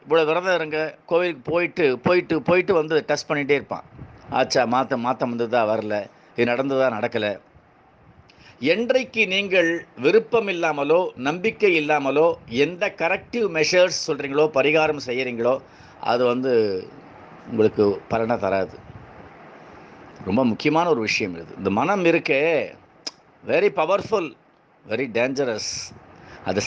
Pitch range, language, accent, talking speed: 115-170 Hz, Tamil, native, 110 wpm